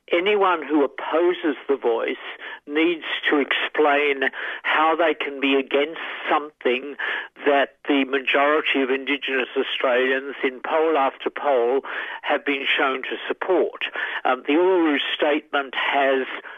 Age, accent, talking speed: 60-79, British, 125 wpm